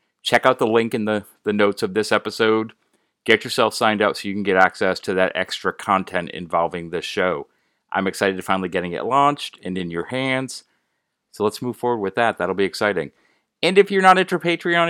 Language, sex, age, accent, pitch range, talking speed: English, male, 30-49, American, 100-140 Hz, 215 wpm